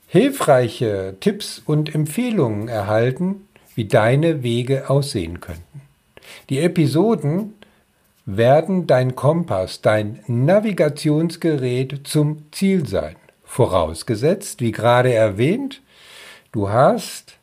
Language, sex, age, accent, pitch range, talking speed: German, male, 50-69, German, 115-160 Hz, 90 wpm